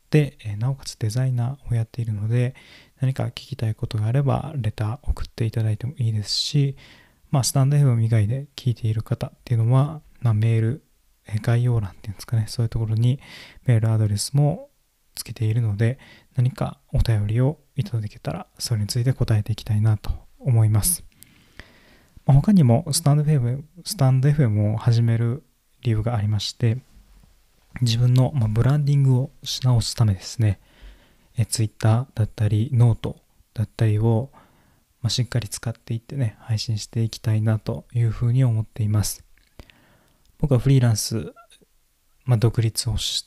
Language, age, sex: Japanese, 20-39, male